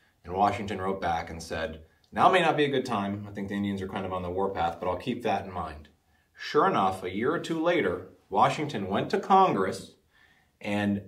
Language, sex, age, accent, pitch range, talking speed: English, male, 30-49, American, 95-130 Hz, 220 wpm